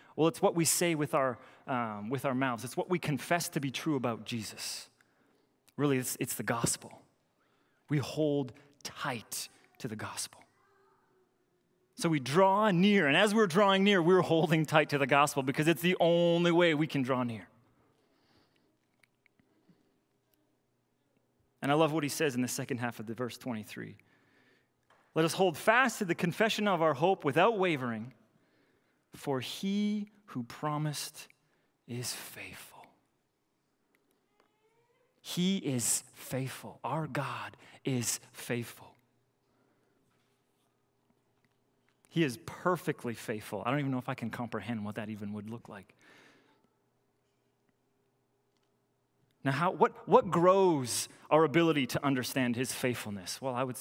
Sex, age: male, 30-49